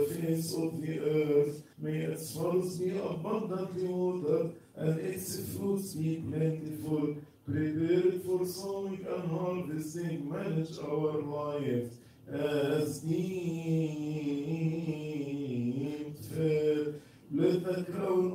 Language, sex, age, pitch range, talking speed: English, male, 50-69, 150-180 Hz, 100 wpm